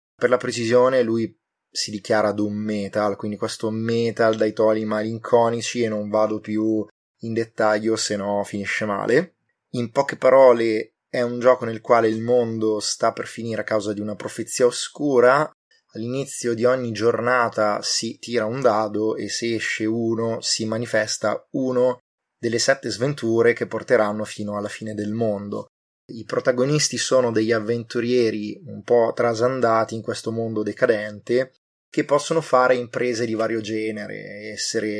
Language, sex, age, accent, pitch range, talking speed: Italian, male, 20-39, native, 110-125 Hz, 150 wpm